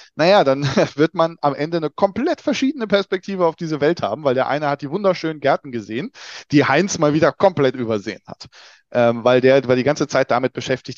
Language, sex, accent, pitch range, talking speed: German, male, German, 125-155 Hz, 210 wpm